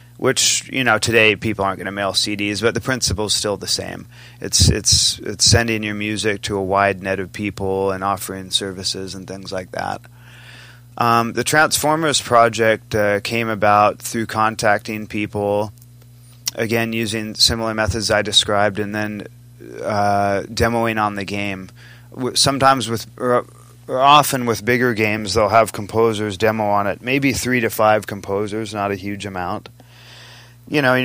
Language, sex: English, male